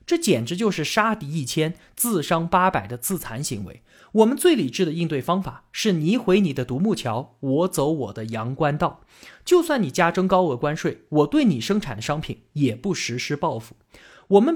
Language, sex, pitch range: Chinese, male, 130-205 Hz